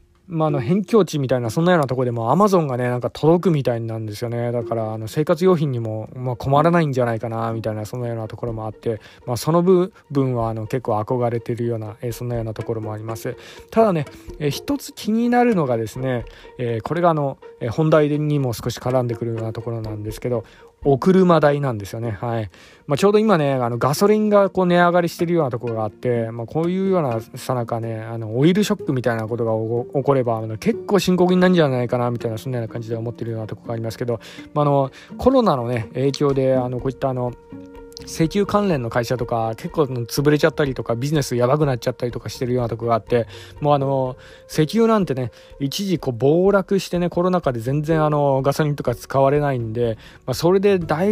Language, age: Japanese, 20-39